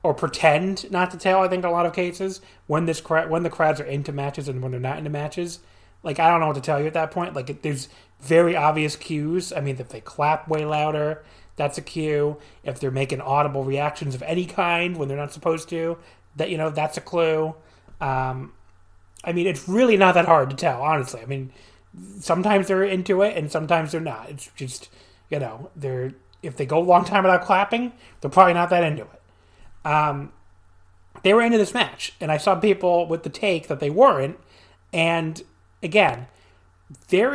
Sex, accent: male, American